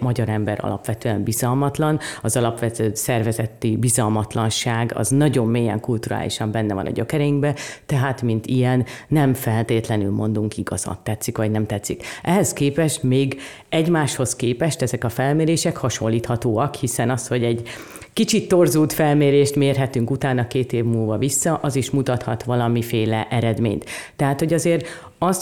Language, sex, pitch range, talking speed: Hungarian, female, 115-140 Hz, 135 wpm